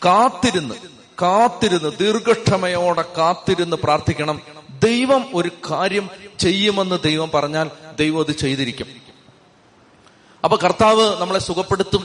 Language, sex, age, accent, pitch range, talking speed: Malayalam, male, 30-49, native, 170-205 Hz, 90 wpm